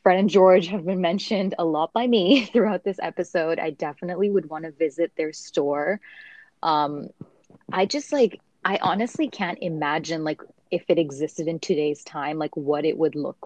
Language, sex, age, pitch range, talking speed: English, female, 20-39, 155-195 Hz, 185 wpm